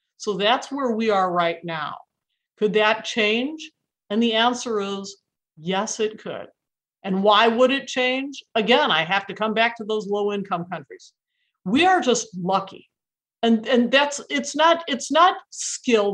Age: 50-69